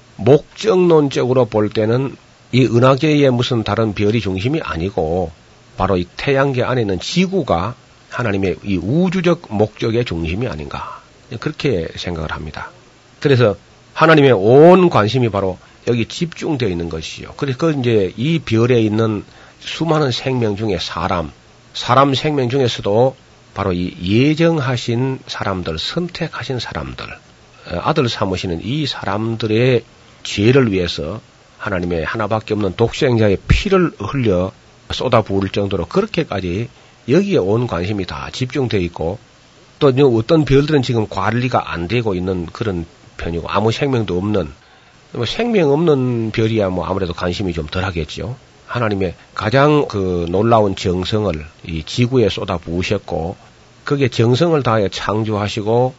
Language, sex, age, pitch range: Korean, male, 40-59, 95-135 Hz